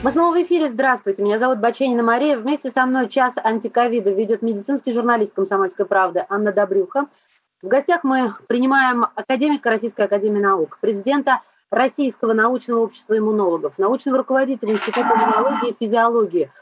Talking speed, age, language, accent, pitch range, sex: 145 wpm, 30-49, Russian, native, 220-280 Hz, female